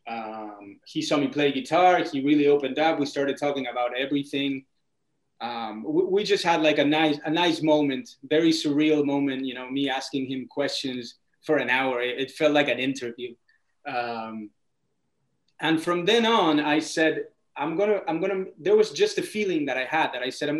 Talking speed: 195 wpm